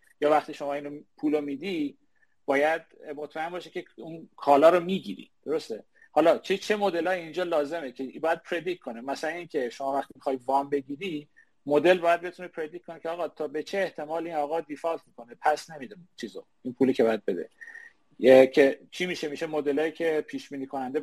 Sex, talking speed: male, 185 wpm